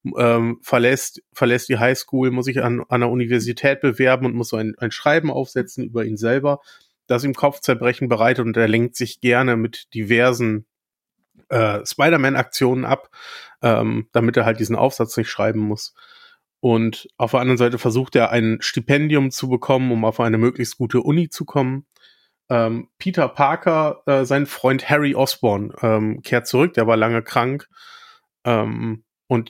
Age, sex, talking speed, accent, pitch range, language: 30-49, male, 160 wpm, German, 115-135 Hz, German